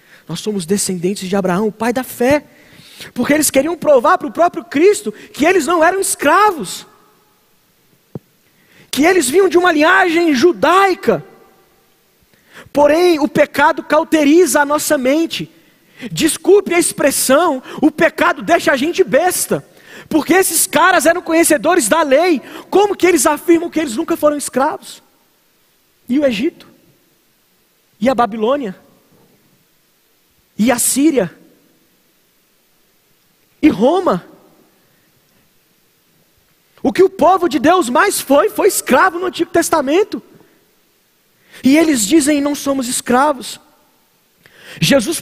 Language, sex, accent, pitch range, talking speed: Portuguese, male, Brazilian, 240-335 Hz, 120 wpm